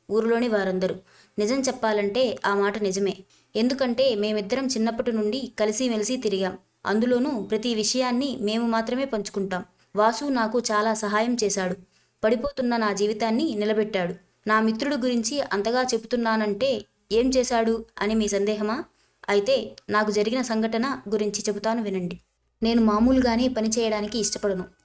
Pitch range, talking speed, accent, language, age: 205-235 Hz, 120 wpm, native, Telugu, 20-39